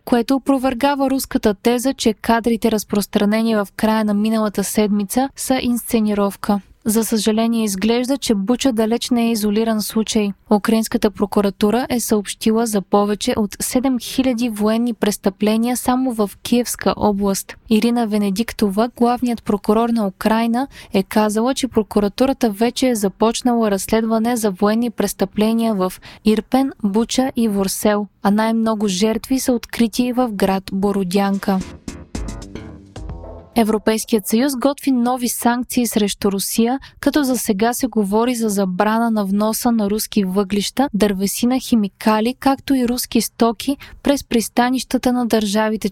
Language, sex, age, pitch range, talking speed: Bulgarian, female, 20-39, 210-245 Hz, 130 wpm